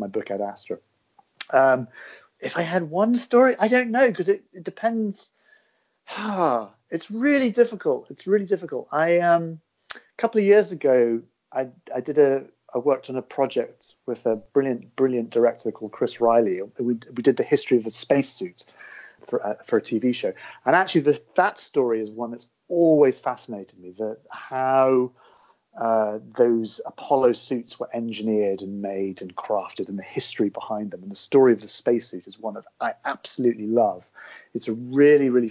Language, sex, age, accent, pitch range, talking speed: English, male, 40-59, British, 115-170 Hz, 180 wpm